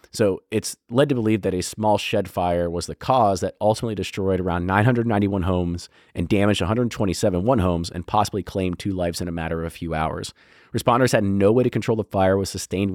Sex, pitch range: male, 90-110 Hz